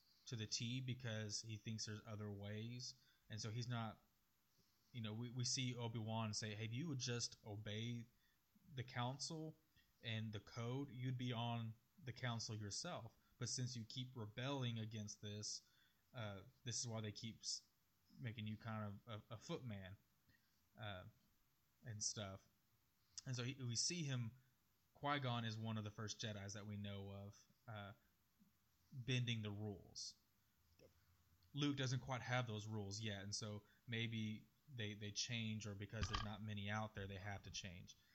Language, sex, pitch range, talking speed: English, male, 105-120 Hz, 160 wpm